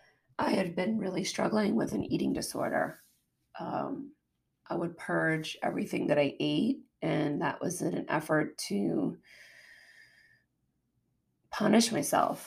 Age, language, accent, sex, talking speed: 30-49, English, American, female, 125 wpm